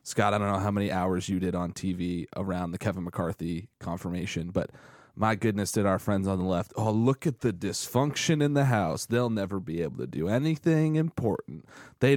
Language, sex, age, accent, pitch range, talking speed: English, male, 30-49, American, 95-125 Hz, 205 wpm